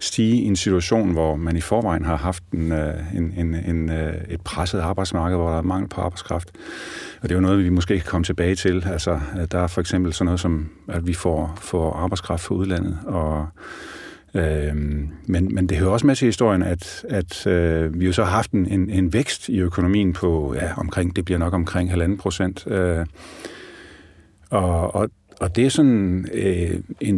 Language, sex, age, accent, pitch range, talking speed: English, male, 40-59, Danish, 85-95 Hz, 195 wpm